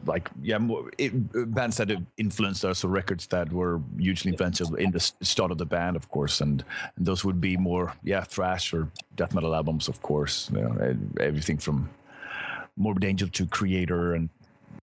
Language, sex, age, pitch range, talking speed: English, male, 30-49, 85-105 Hz, 185 wpm